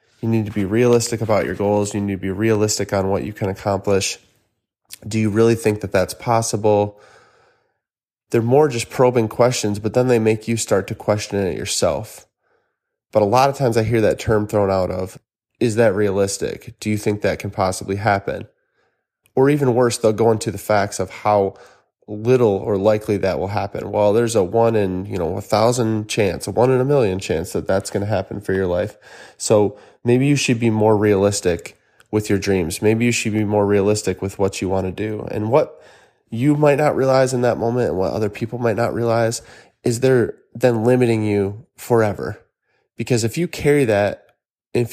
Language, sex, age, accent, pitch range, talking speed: English, male, 20-39, American, 105-120 Hz, 205 wpm